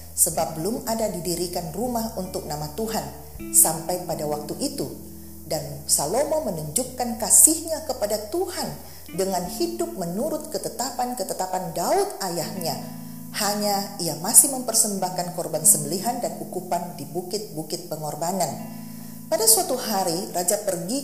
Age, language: 40-59, Indonesian